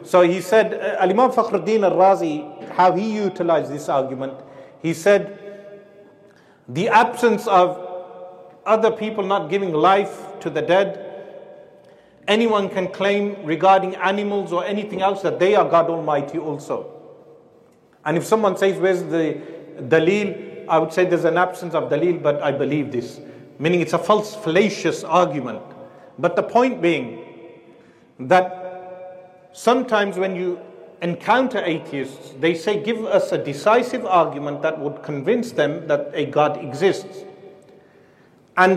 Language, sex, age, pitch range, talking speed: English, male, 40-59, 160-205 Hz, 140 wpm